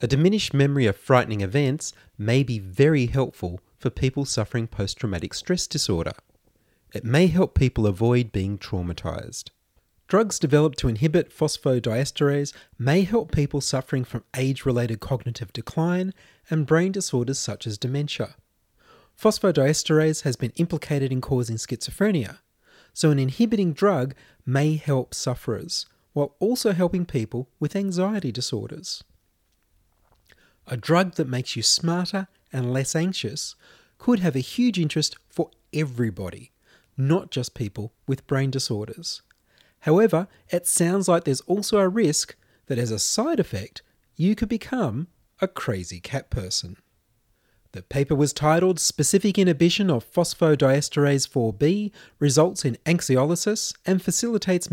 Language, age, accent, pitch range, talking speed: English, 30-49, Australian, 120-170 Hz, 130 wpm